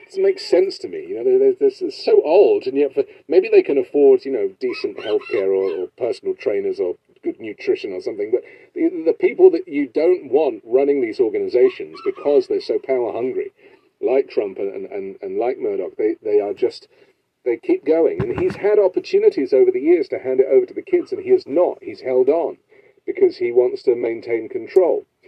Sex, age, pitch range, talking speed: male, 40-59, 380-420 Hz, 210 wpm